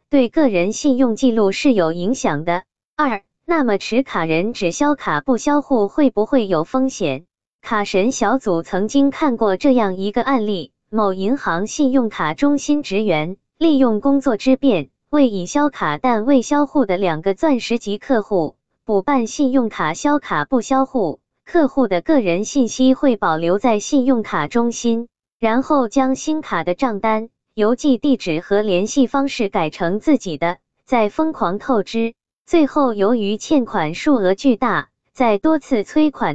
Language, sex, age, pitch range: Chinese, female, 20-39, 195-275 Hz